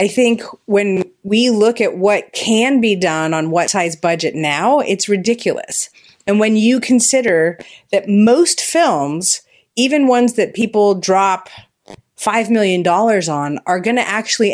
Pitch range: 165-220 Hz